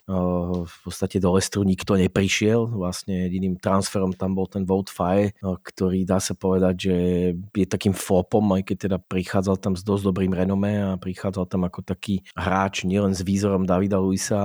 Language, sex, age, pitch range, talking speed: Slovak, male, 30-49, 95-110 Hz, 170 wpm